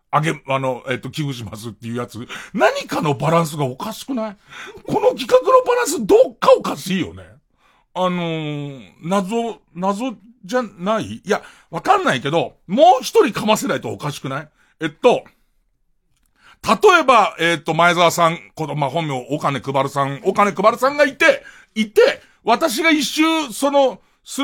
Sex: male